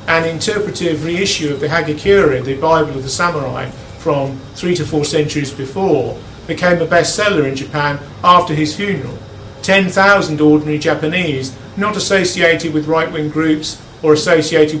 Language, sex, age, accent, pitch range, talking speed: English, male, 50-69, British, 145-180 Hz, 145 wpm